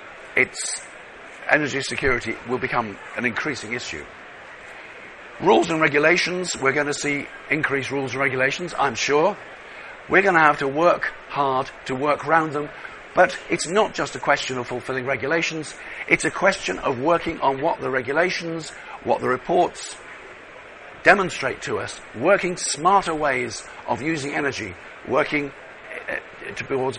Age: 50-69